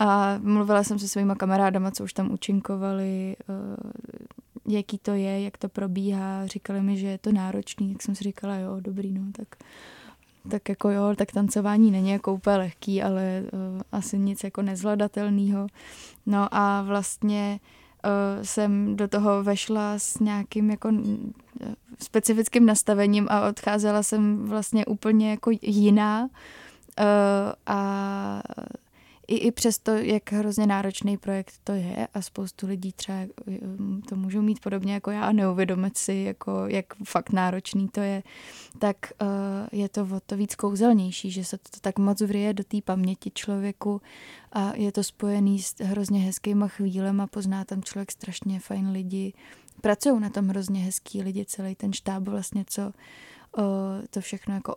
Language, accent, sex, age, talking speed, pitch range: Czech, native, female, 20-39, 150 wpm, 195-210 Hz